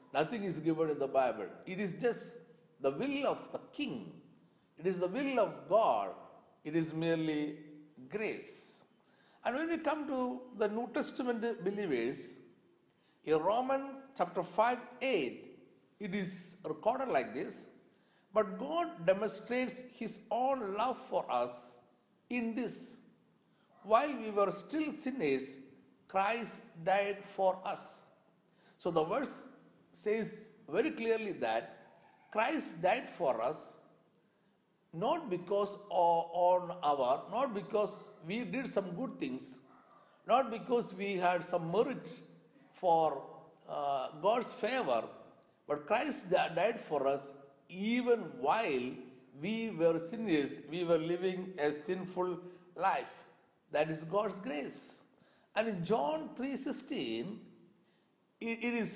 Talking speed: 120 wpm